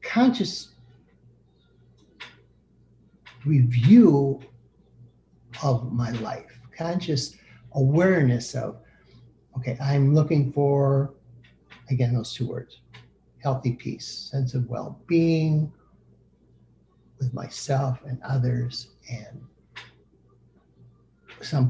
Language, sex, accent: English, male, American